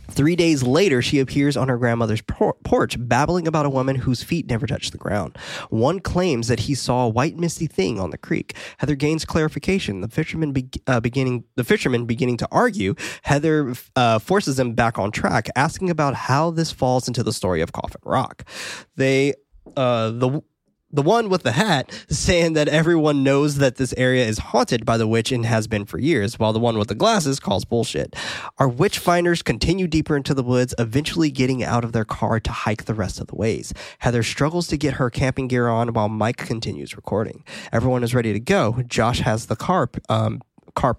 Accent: American